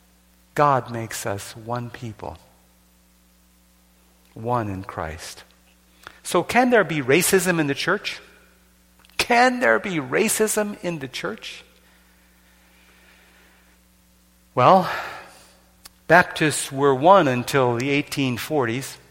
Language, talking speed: English, 95 wpm